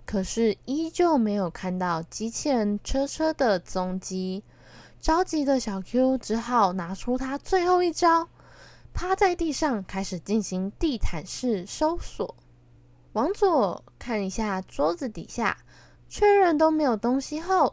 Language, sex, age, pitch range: Chinese, female, 10-29, 220-320 Hz